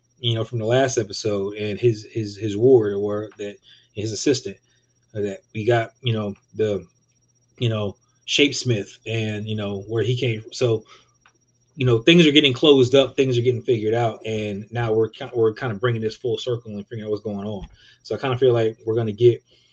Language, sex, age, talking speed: English, male, 30-49, 215 wpm